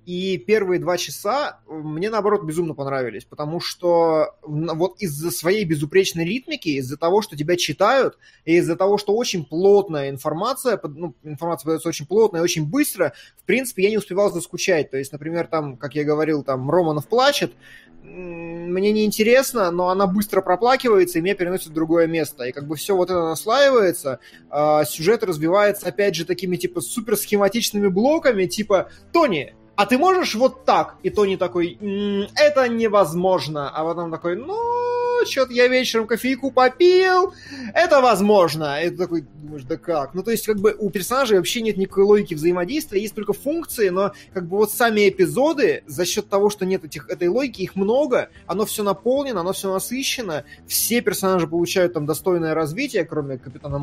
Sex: male